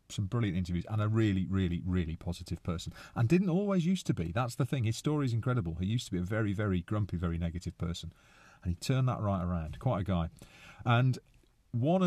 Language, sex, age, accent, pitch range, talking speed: English, male, 40-59, British, 90-130 Hz, 225 wpm